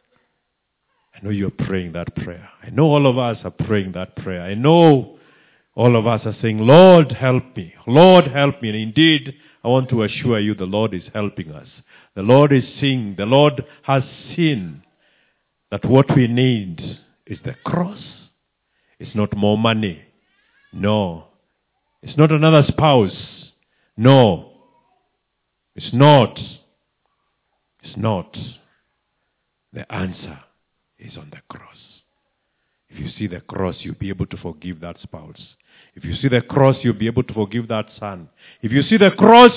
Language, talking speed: English, 160 wpm